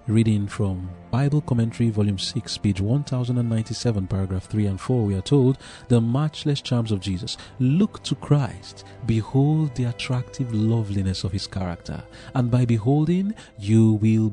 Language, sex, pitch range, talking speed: English, male, 105-130 Hz, 145 wpm